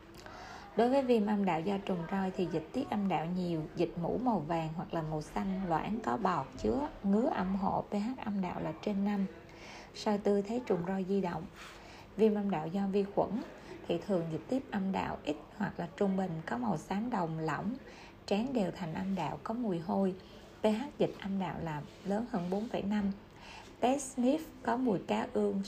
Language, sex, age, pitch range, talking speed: Vietnamese, female, 20-39, 175-210 Hz, 200 wpm